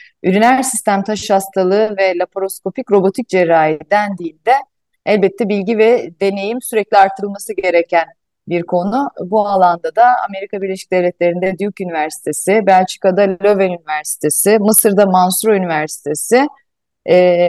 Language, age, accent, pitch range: Turkish, 30-49, native, 180-230 Hz